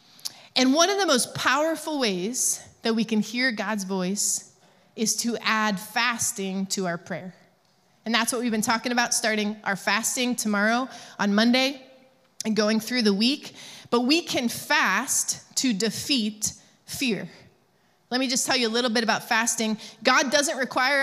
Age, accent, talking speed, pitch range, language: 20-39, American, 165 wpm, 215-255 Hz, English